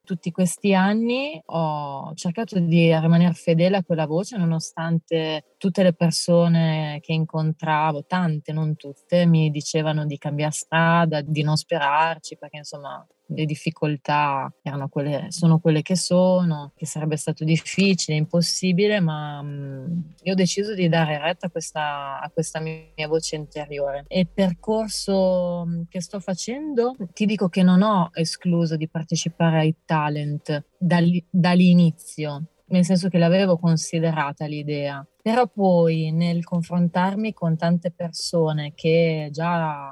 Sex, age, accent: female, 20-39, native